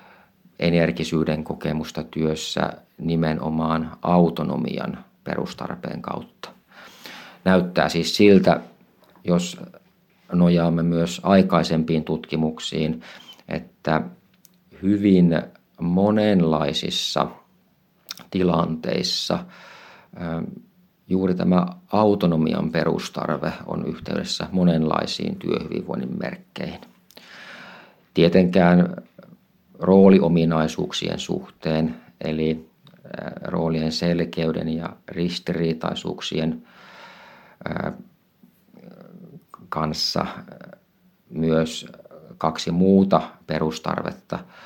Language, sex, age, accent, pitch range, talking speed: Finnish, male, 50-69, native, 80-95 Hz, 55 wpm